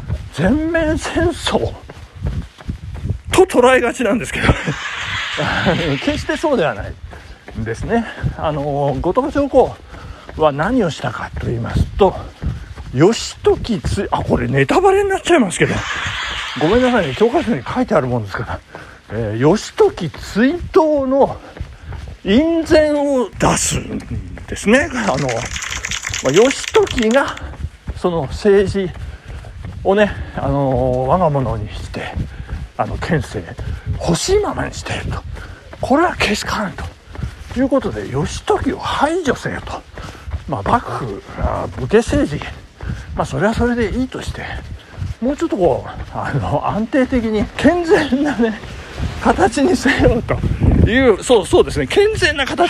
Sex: male